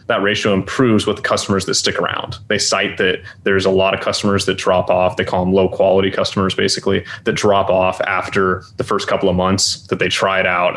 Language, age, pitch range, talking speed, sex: English, 20-39, 95-105 Hz, 230 wpm, male